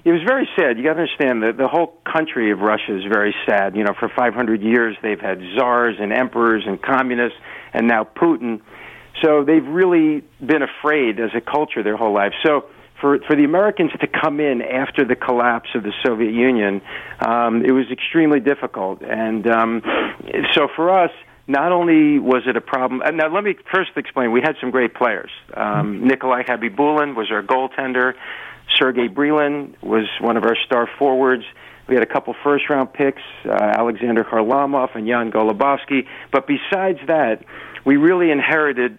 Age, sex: 50-69, male